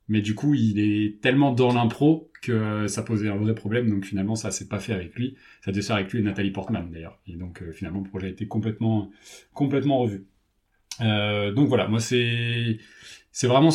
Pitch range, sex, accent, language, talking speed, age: 105-130 Hz, male, French, French, 215 wpm, 30-49